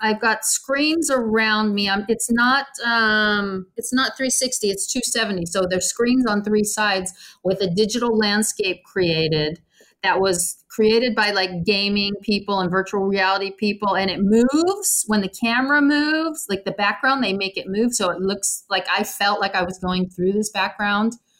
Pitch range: 185-225 Hz